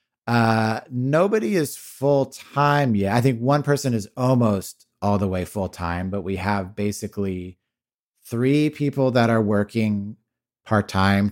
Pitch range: 95-120 Hz